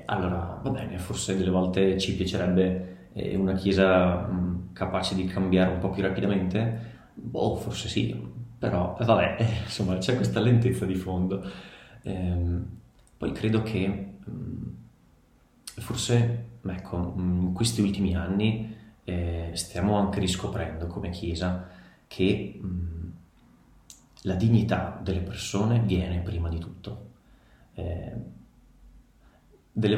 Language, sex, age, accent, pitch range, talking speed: Italian, male, 30-49, native, 90-105 Hz, 115 wpm